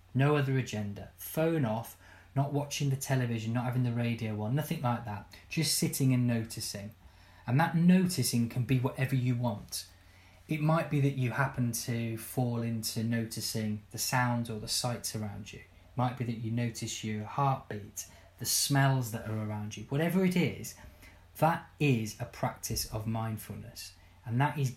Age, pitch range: 20-39, 105-135 Hz